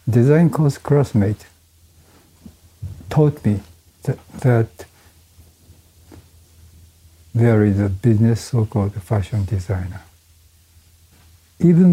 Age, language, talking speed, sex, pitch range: 60-79, English, 80 wpm, male, 85-110 Hz